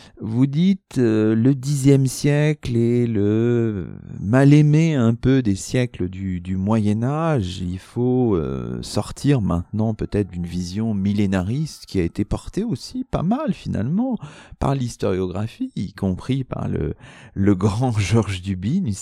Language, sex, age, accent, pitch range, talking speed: French, male, 40-59, French, 100-145 Hz, 140 wpm